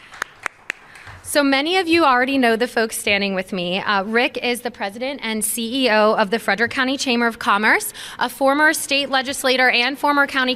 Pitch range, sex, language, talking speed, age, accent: 215-265 Hz, female, English, 180 wpm, 20-39, American